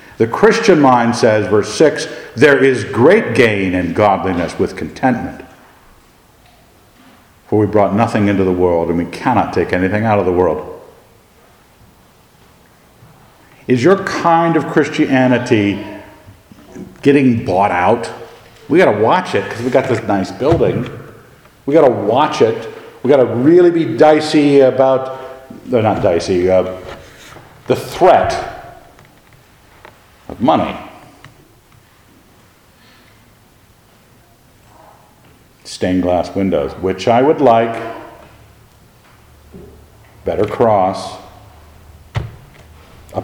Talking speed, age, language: 110 wpm, 50-69, English